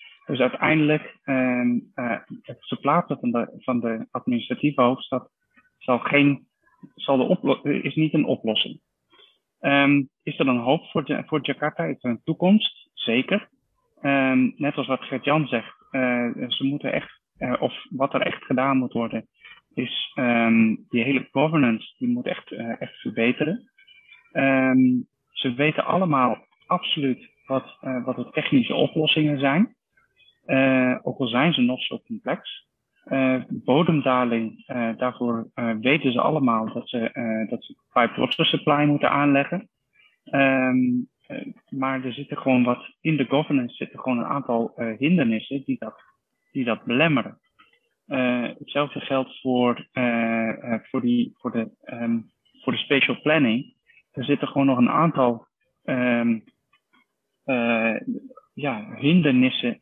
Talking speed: 145 wpm